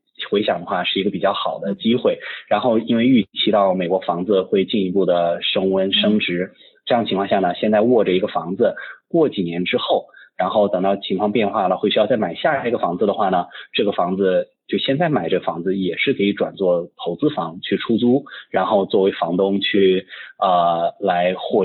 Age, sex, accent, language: 20-39, male, native, Chinese